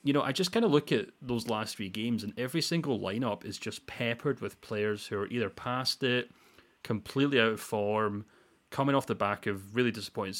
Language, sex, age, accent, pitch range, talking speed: English, male, 30-49, British, 100-120 Hz, 215 wpm